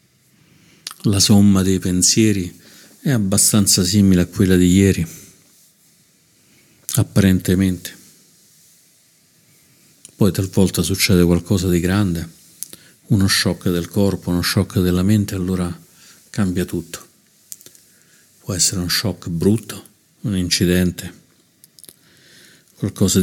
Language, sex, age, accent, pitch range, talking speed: Italian, male, 50-69, native, 90-105 Hz, 95 wpm